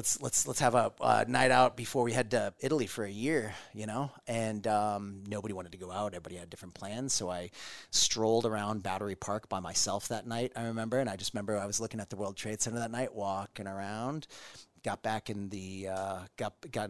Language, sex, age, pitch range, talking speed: English, male, 30-49, 100-125 Hz, 225 wpm